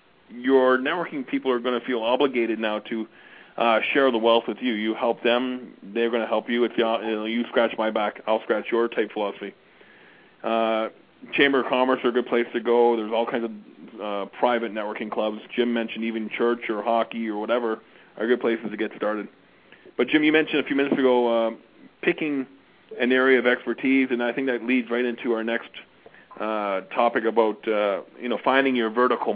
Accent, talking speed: American, 200 wpm